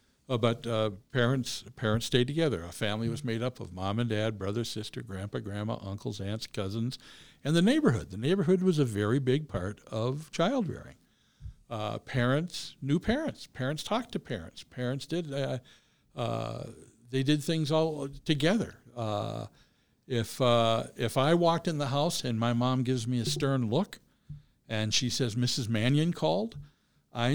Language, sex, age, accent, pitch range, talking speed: English, male, 60-79, American, 110-150 Hz, 170 wpm